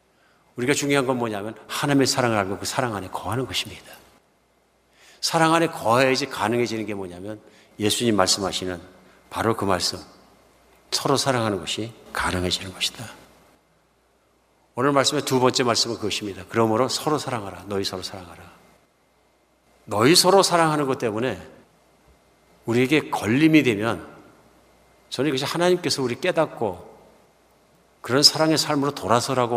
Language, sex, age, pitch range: Korean, male, 50-69, 100-140 Hz